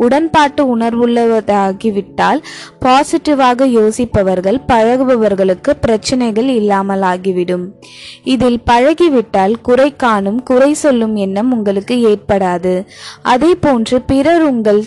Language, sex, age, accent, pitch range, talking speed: Tamil, female, 20-39, native, 210-275 Hz, 75 wpm